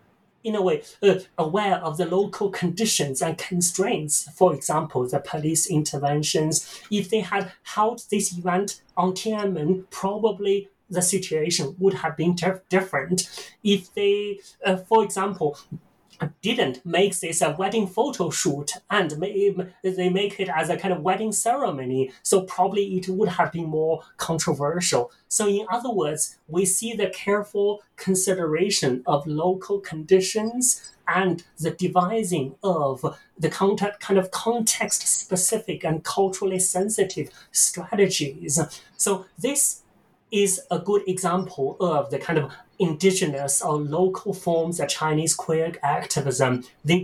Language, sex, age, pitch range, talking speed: English, male, 30-49, 155-195 Hz, 135 wpm